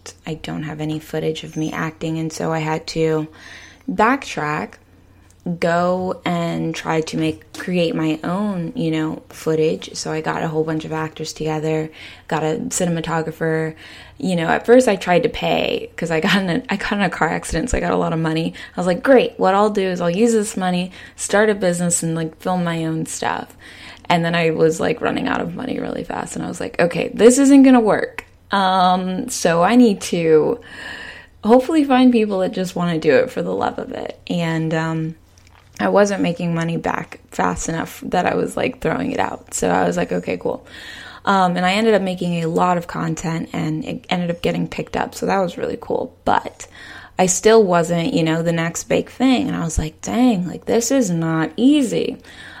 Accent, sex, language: American, female, English